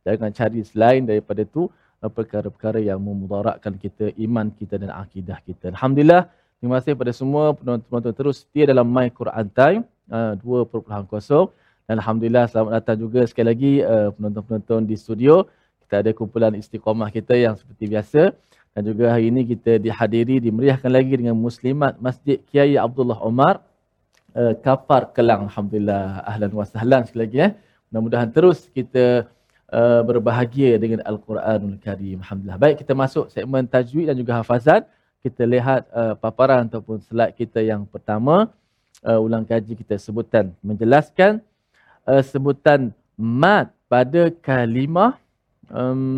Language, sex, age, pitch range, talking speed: Malayalam, male, 20-39, 110-135 Hz, 140 wpm